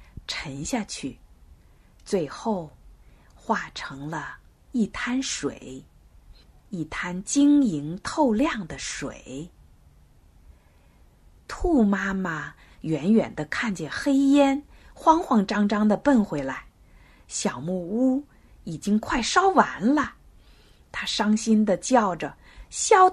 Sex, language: female, Chinese